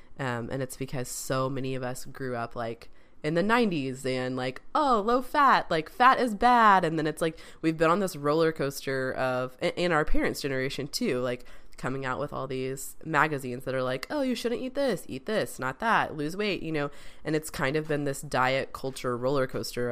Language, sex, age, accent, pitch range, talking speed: English, female, 20-39, American, 130-155 Hz, 215 wpm